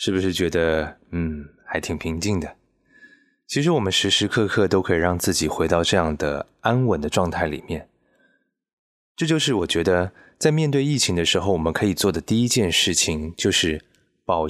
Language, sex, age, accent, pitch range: Chinese, male, 20-39, native, 85-120 Hz